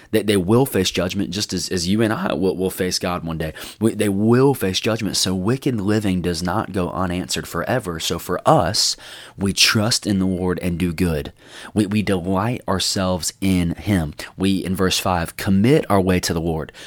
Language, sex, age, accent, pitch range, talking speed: English, male, 20-39, American, 85-100 Hz, 185 wpm